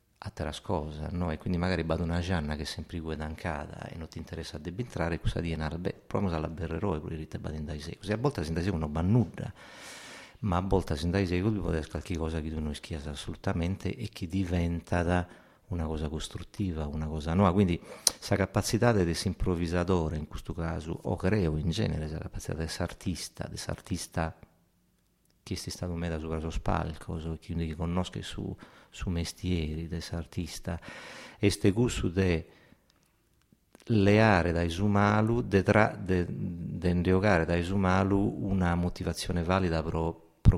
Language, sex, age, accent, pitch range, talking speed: Italian, male, 50-69, native, 80-95 Hz, 170 wpm